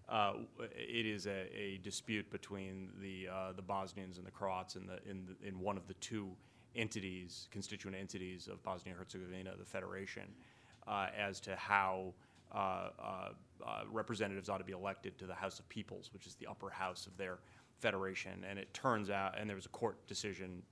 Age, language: 30-49, English